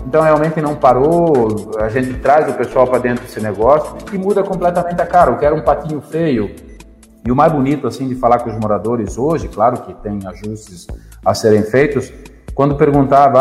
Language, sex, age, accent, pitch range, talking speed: Portuguese, male, 40-59, Brazilian, 115-165 Hz, 190 wpm